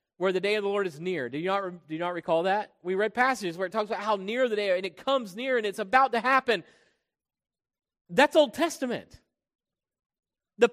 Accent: American